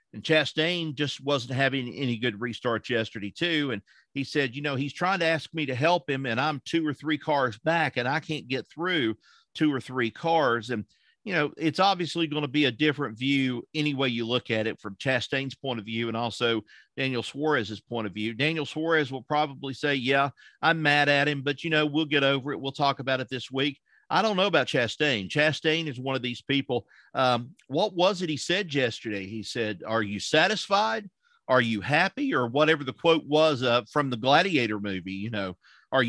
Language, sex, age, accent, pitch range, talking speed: English, male, 50-69, American, 120-160 Hz, 215 wpm